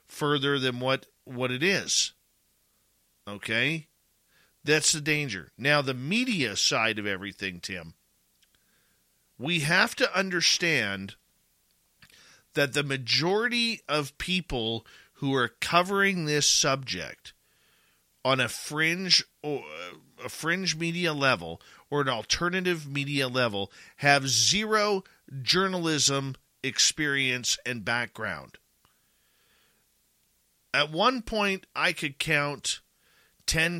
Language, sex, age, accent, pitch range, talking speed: English, male, 50-69, American, 125-165 Hz, 100 wpm